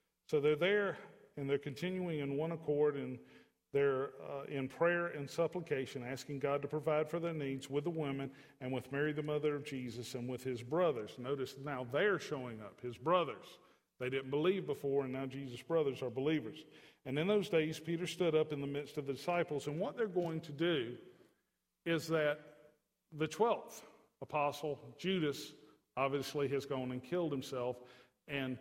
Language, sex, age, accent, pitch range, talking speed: English, male, 50-69, American, 130-155 Hz, 180 wpm